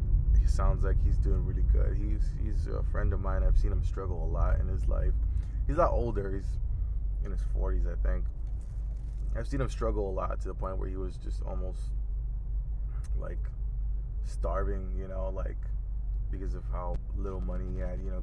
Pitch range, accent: 85-105 Hz, American